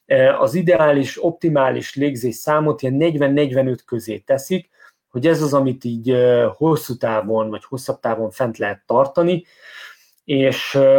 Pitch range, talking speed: 115-155 Hz, 120 wpm